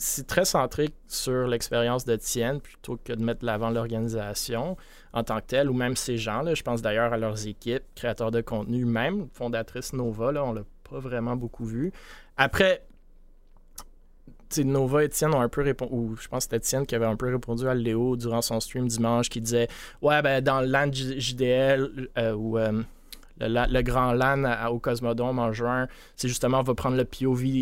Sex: male